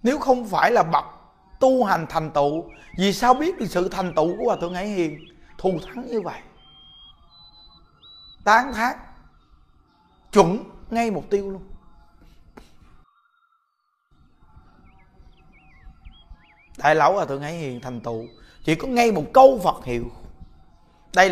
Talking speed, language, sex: 135 wpm, Vietnamese, male